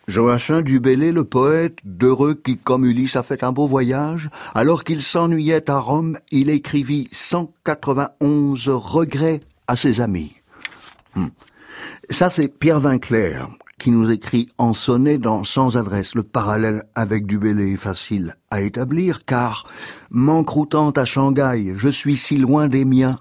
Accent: French